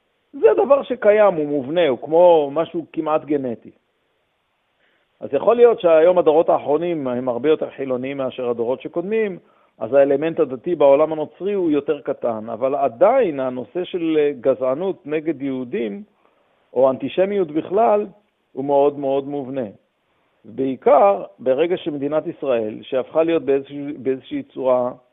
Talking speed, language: 120 wpm, Hebrew